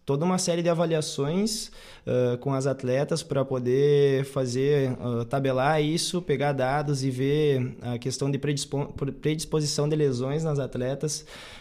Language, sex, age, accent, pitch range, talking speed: Portuguese, male, 20-39, Brazilian, 130-155 Hz, 145 wpm